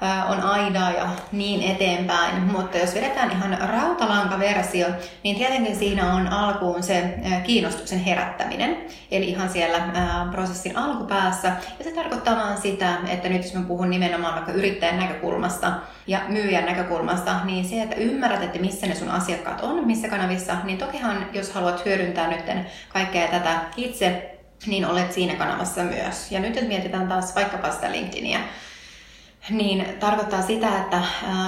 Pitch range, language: 180-220 Hz, Finnish